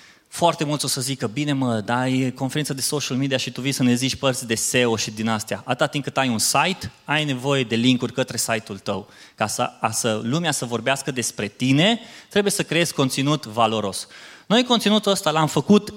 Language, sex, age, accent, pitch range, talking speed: Romanian, male, 20-39, native, 120-160 Hz, 205 wpm